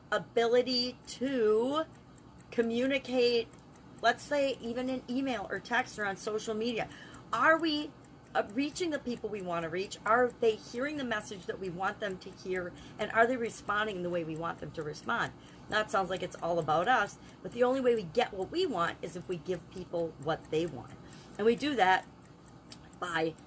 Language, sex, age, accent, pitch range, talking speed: English, female, 40-59, American, 170-235 Hz, 190 wpm